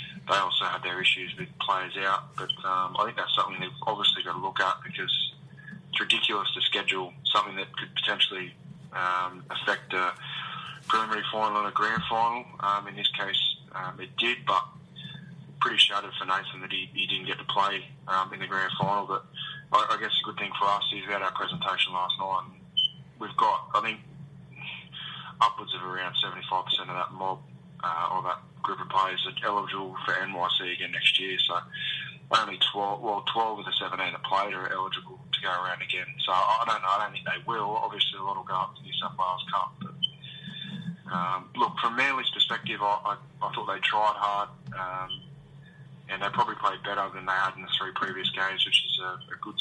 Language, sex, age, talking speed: English, male, 20-39, 205 wpm